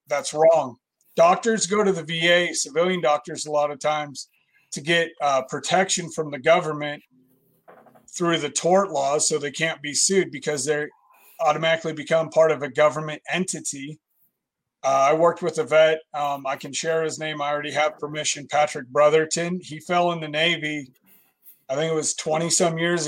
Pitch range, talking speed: 145-165 Hz, 175 wpm